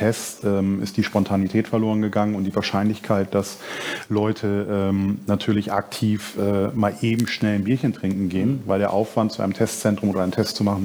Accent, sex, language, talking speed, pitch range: German, male, German, 190 wpm, 100-115 Hz